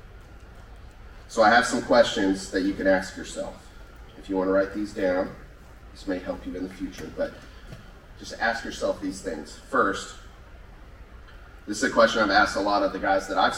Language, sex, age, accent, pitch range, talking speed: English, male, 30-49, American, 95-115 Hz, 195 wpm